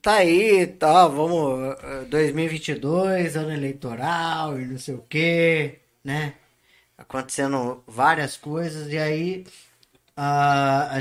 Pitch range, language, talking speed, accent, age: 140-180 Hz, Portuguese, 110 wpm, Brazilian, 20-39